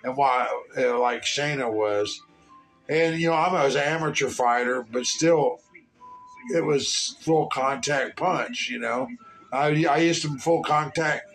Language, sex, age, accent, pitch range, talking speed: English, male, 50-69, American, 145-185 Hz, 150 wpm